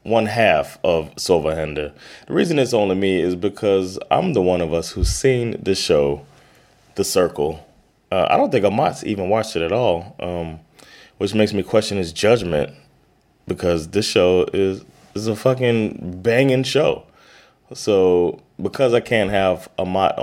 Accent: American